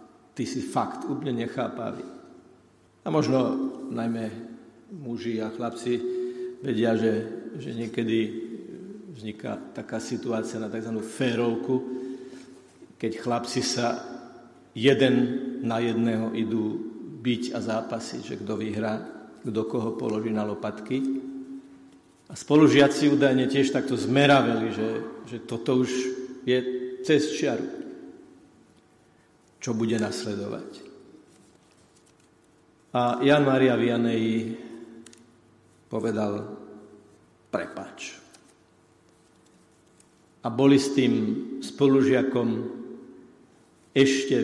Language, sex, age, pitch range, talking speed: Slovak, male, 50-69, 115-130 Hz, 90 wpm